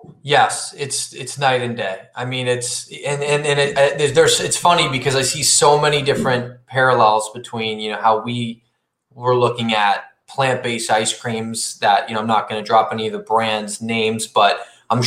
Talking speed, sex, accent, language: 200 wpm, male, American, English